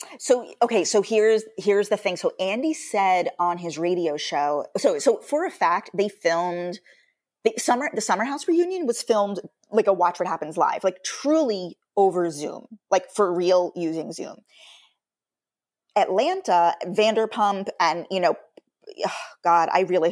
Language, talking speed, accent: English, 155 wpm, American